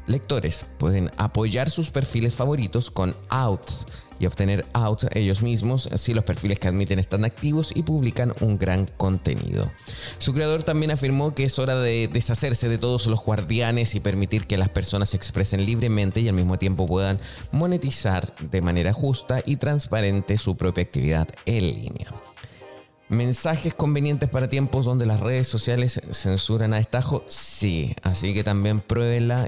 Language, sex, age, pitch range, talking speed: Spanish, male, 20-39, 95-125 Hz, 160 wpm